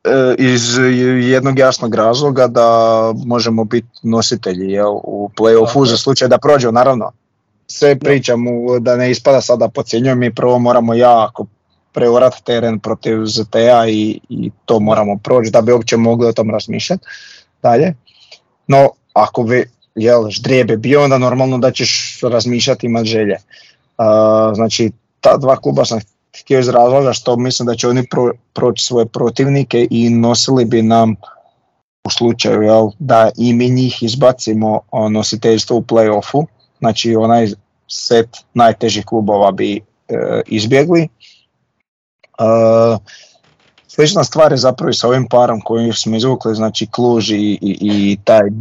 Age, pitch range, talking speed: 20-39, 110-125 Hz, 140 wpm